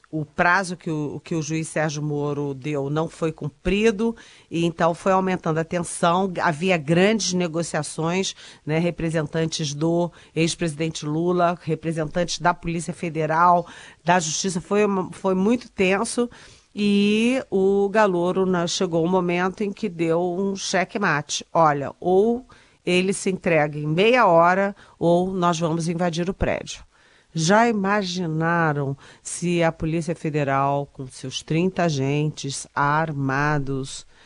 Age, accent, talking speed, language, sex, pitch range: 40-59, Brazilian, 125 wpm, Portuguese, female, 145-180 Hz